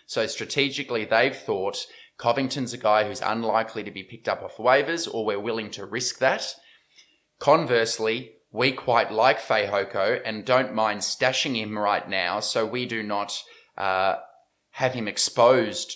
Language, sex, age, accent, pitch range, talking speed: English, male, 20-39, Australian, 110-135 Hz, 155 wpm